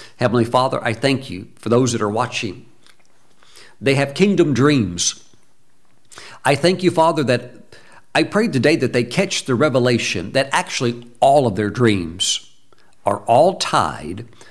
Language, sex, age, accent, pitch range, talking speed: English, male, 60-79, American, 110-135 Hz, 150 wpm